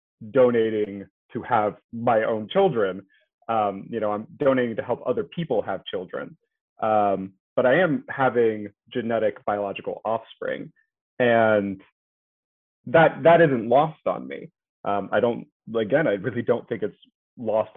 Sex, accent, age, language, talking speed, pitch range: male, American, 30-49, English, 140 wpm, 105-135 Hz